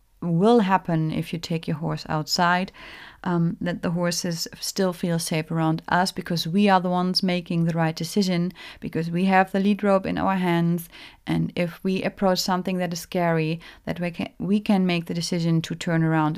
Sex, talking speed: female, 200 wpm